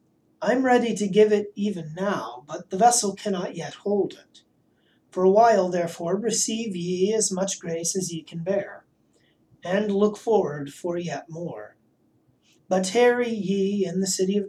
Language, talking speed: English, 170 wpm